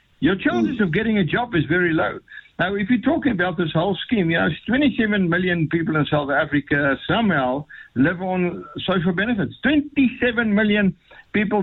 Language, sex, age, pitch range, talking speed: English, male, 60-79, 175-220 Hz, 170 wpm